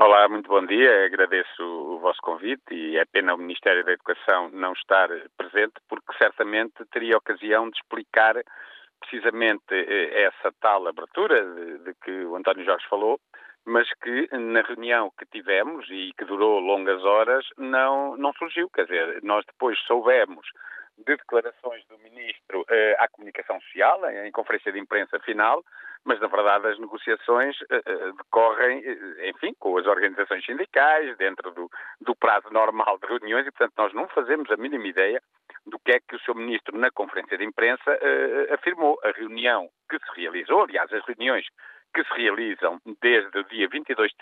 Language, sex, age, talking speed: Portuguese, male, 50-69, 160 wpm